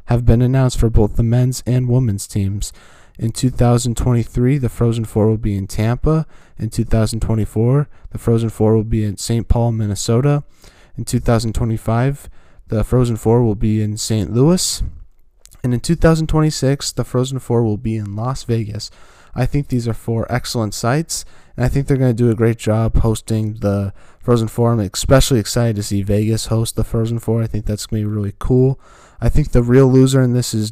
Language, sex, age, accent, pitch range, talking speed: English, male, 20-39, American, 105-120 Hz, 190 wpm